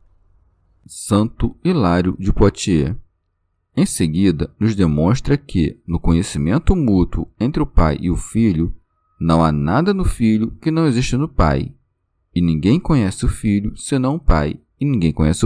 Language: Portuguese